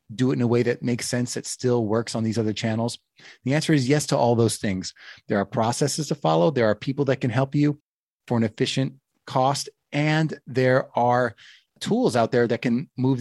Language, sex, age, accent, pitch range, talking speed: English, male, 30-49, American, 120-150 Hz, 220 wpm